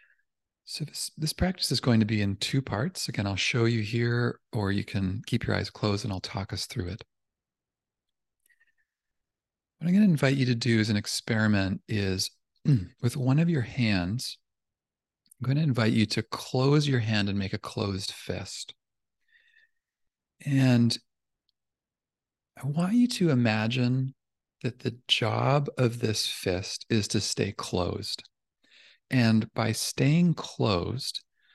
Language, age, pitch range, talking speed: English, 40-59, 100-135 Hz, 150 wpm